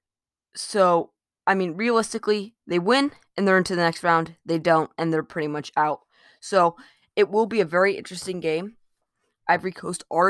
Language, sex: English, female